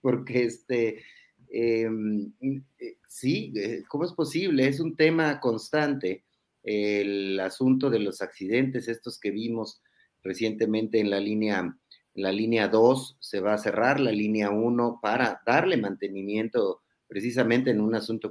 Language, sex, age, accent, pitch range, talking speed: Spanish, male, 30-49, Mexican, 100-125 Hz, 140 wpm